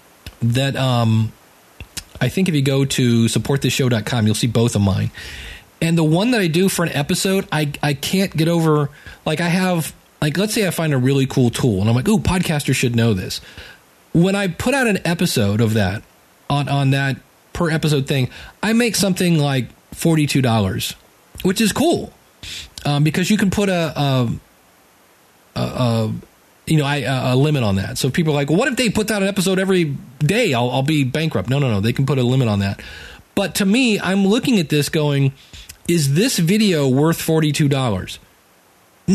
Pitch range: 125-180 Hz